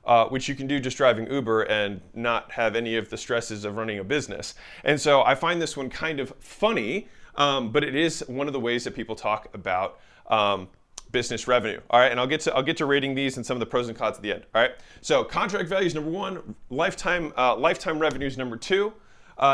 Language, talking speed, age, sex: English, 245 wpm, 30-49, male